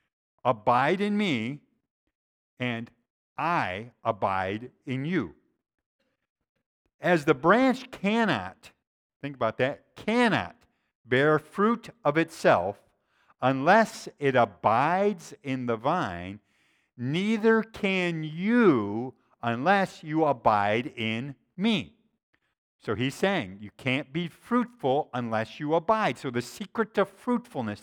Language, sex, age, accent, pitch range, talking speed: English, male, 50-69, American, 125-200 Hz, 105 wpm